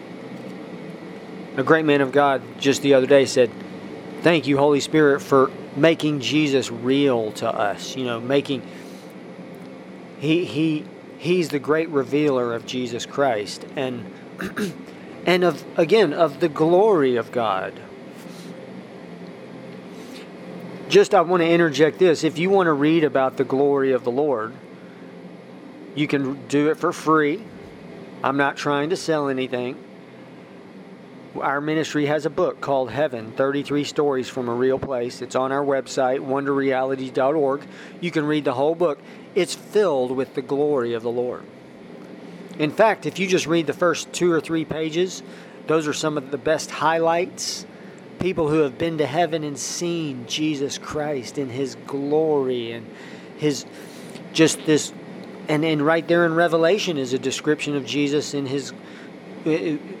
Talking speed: 150 wpm